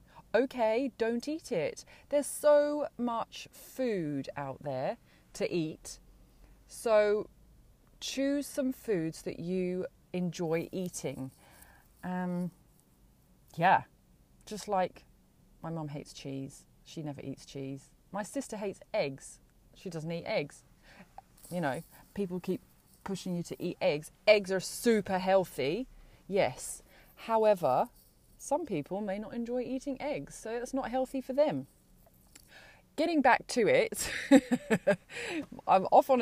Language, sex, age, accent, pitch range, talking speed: English, female, 30-49, British, 160-235 Hz, 125 wpm